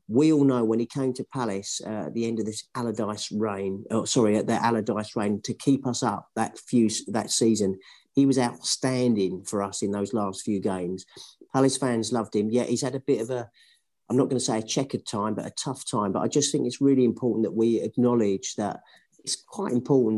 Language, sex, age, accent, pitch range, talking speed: English, male, 40-59, British, 105-125 Hz, 230 wpm